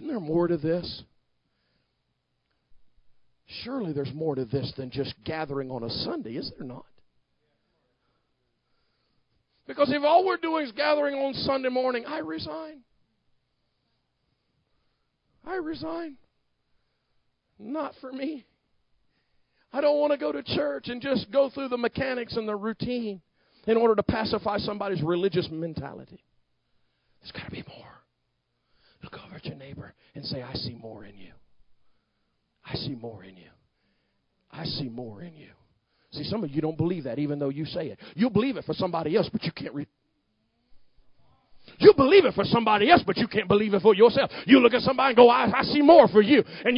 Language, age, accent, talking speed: English, 50-69, American, 170 wpm